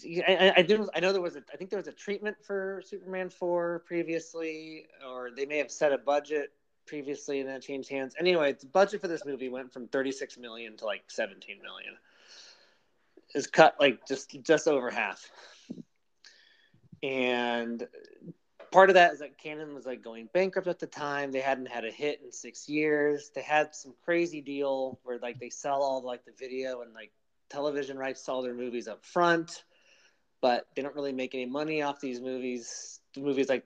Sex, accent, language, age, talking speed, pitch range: male, American, English, 20-39, 195 wpm, 120-155 Hz